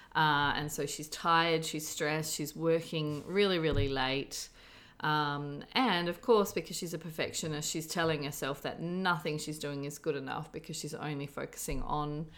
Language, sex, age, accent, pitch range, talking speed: English, female, 30-49, Australian, 150-165 Hz, 170 wpm